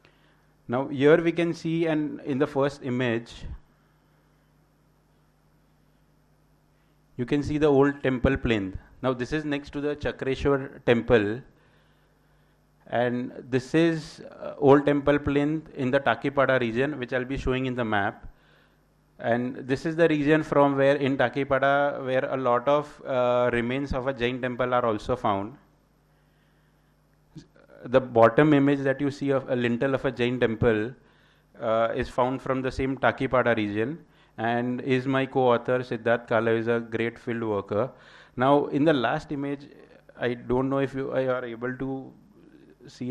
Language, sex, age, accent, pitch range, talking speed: English, male, 30-49, Indian, 120-140 Hz, 155 wpm